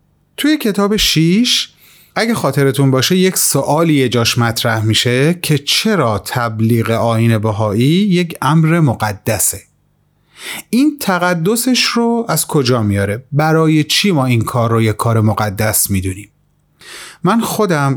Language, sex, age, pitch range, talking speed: Persian, male, 30-49, 115-165 Hz, 125 wpm